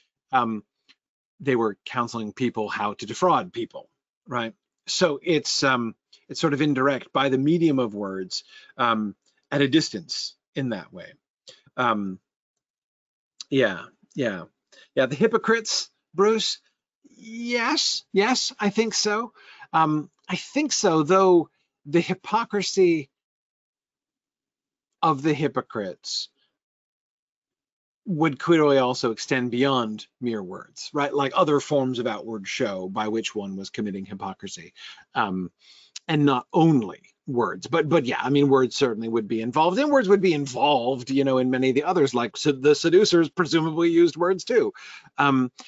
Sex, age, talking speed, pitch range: male, 40-59, 140 wpm, 120-180 Hz